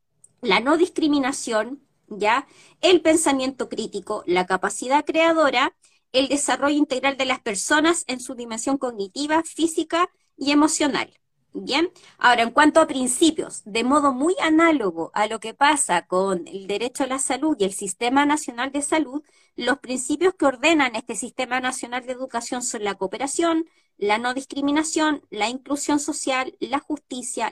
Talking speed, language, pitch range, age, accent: 150 wpm, Spanish, 235-305 Hz, 20-39, Argentinian